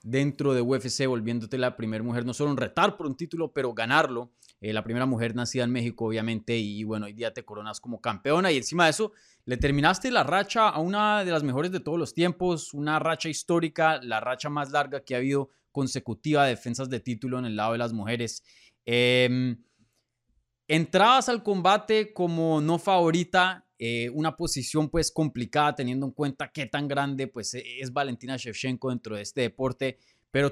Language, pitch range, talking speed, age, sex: Spanish, 120-160 Hz, 195 wpm, 20-39, male